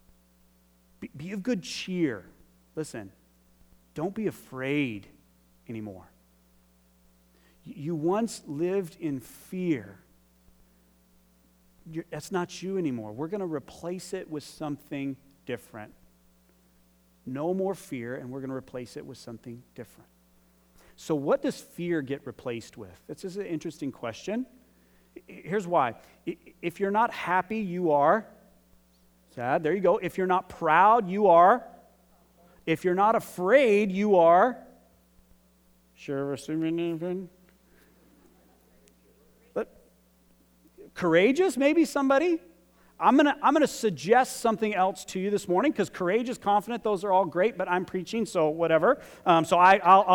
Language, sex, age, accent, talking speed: English, male, 40-59, American, 130 wpm